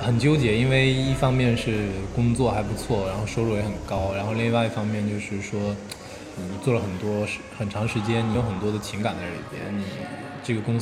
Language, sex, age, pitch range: Chinese, male, 20-39, 100-120 Hz